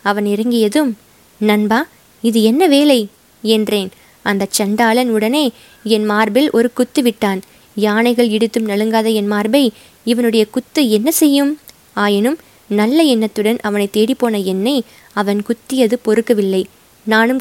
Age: 20-39